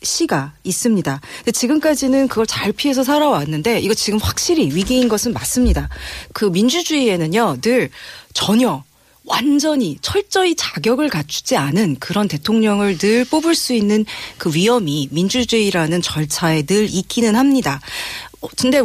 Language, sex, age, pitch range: Korean, female, 40-59, 180-265 Hz